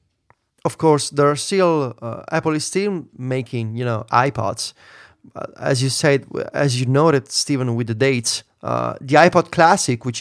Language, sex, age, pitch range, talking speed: English, male, 30-49, 120-160 Hz, 165 wpm